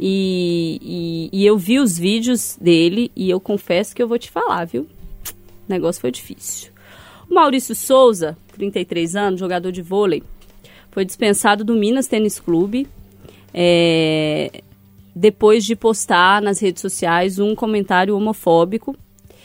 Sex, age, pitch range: female, 20-39, 175-225 Hz